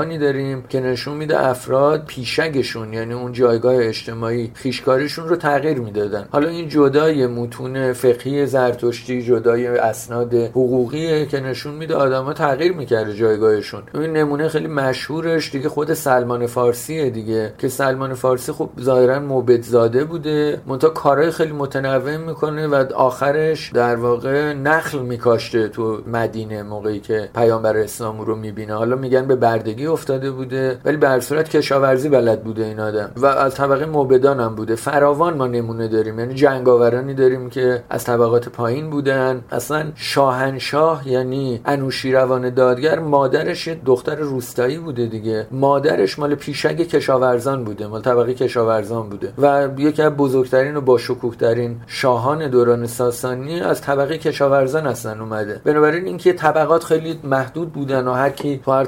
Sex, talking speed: male, 145 wpm